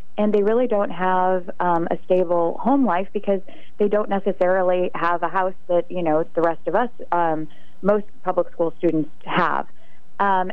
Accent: American